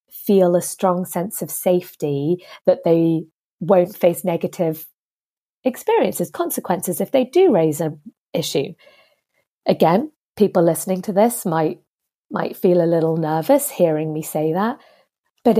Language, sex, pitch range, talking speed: English, female, 170-205 Hz, 135 wpm